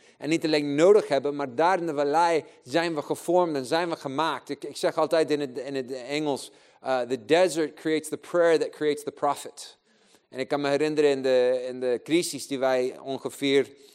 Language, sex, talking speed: Dutch, male, 200 wpm